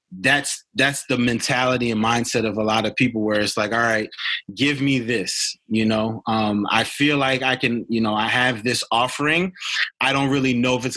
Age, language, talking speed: 20-39, English, 215 wpm